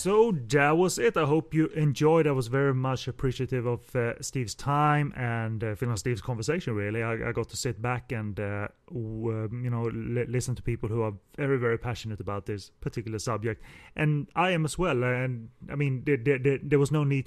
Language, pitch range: English, 115-140 Hz